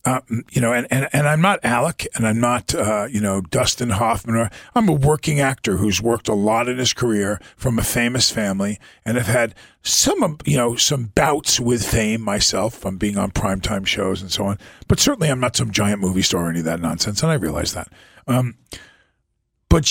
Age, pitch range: 40-59, 100-130 Hz